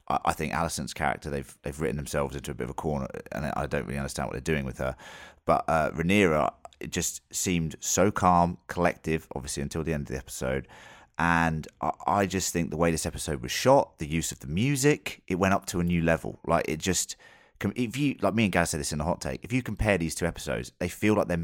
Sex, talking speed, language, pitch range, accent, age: male, 250 wpm, English, 75-90 Hz, British, 30-49